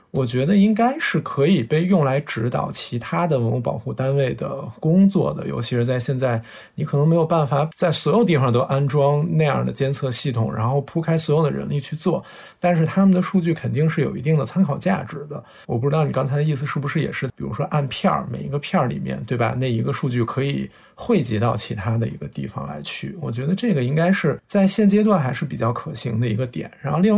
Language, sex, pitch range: Chinese, male, 135-185 Hz